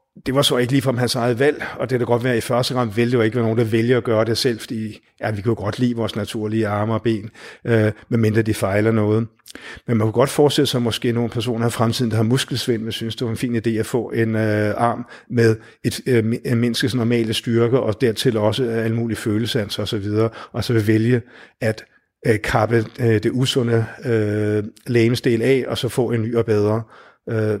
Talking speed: 235 wpm